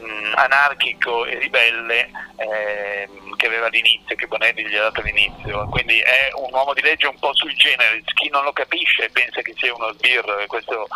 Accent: native